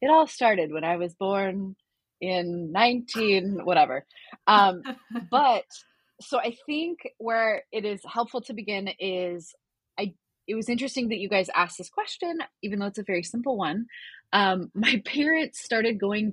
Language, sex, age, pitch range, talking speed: English, female, 20-39, 180-240 Hz, 160 wpm